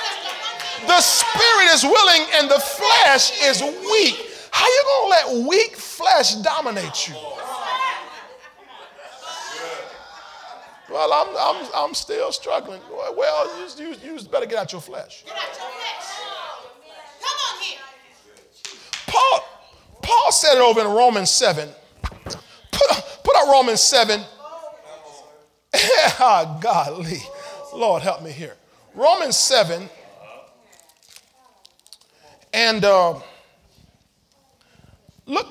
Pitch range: 225-315 Hz